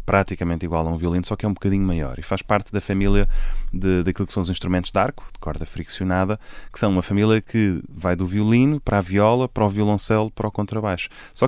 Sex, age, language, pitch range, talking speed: male, 20-39, Portuguese, 90-105 Hz, 240 wpm